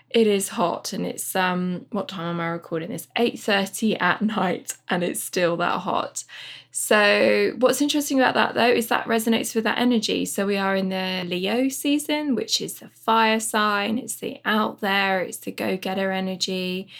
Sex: female